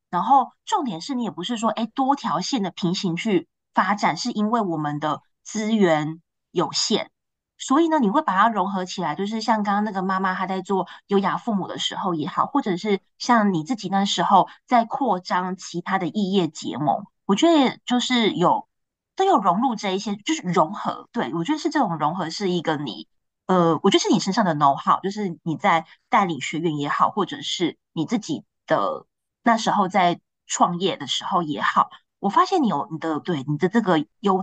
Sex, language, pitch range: female, Chinese, 175-230 Hz